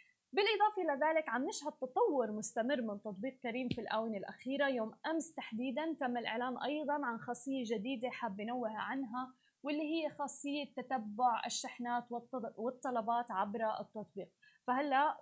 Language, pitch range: Arabic, 225-280 Hz